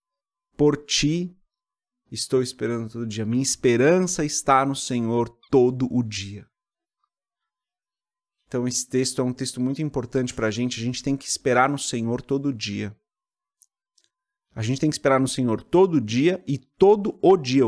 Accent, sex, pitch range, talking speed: Brazilian, male, 125-155 Hz, 160 wpm